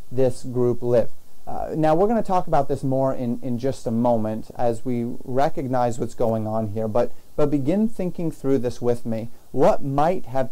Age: 30-49